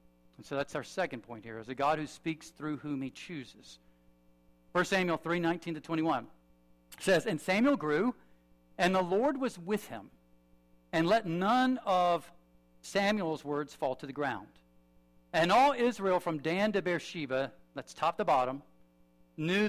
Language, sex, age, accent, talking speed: English, male, 50-69, American, 165 wpm